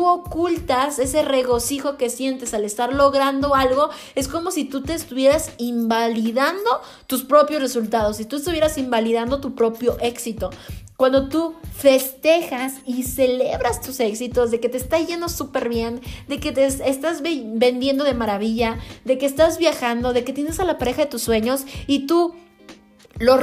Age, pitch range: 20-39, 235-280 Hz